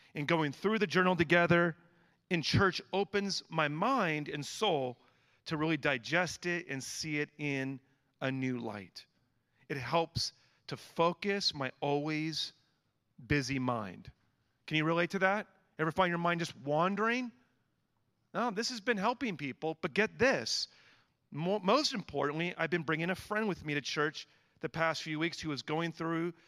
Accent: American